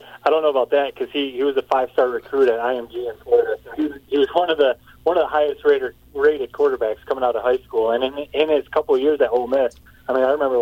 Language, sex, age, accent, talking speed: English, male, 20-39, American, 285 wpm